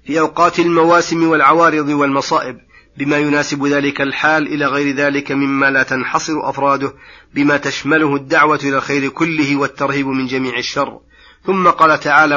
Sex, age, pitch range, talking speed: male, 30-49, 140-160 Hz, 140 wpm